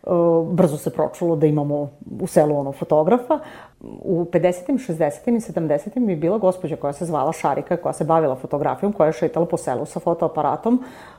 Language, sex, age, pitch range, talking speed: Croatian, female, 30-49, 155-200 Hz, 170 wpm